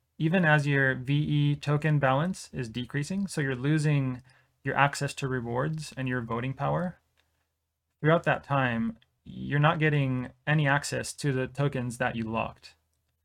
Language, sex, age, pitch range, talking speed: English, male, 20-39, 115-140 Hz, 150 wpm